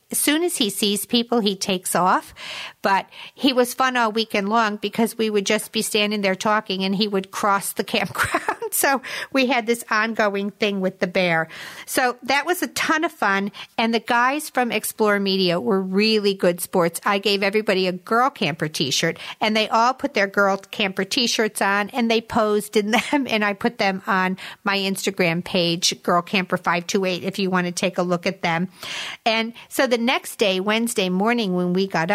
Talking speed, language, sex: 200 wpm, English, female